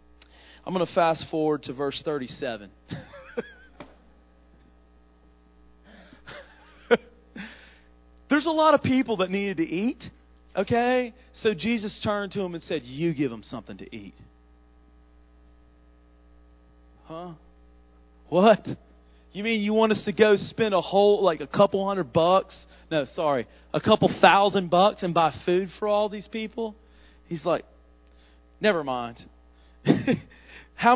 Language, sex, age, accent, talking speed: English, male, 40-59, American, 130 wpm